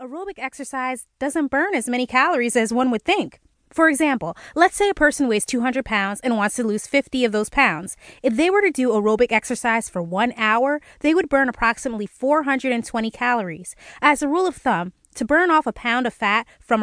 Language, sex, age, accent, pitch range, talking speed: English, female, 20-39, American, 220-285 Hz, 205 wpm